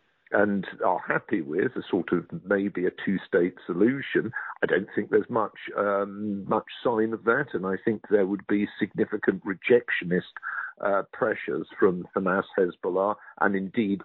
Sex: male